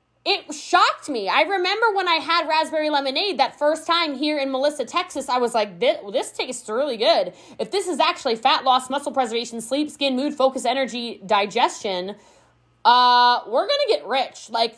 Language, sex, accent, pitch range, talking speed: English, female, American, 260-355 Hz, 185 wpm